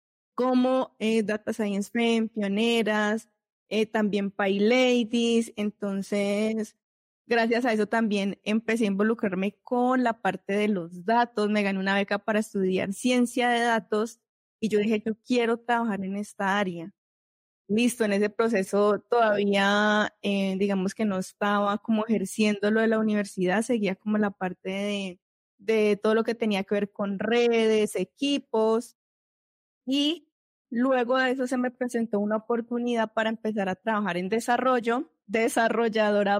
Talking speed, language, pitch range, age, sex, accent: 145 wpm, Spanish, 205-235 Hz, 20-39, female, Colombian